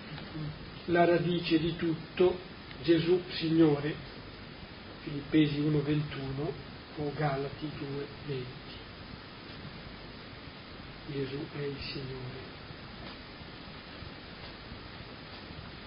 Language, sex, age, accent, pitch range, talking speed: Italian, male, 50-69, native, 145-180 Hz, 55 wpm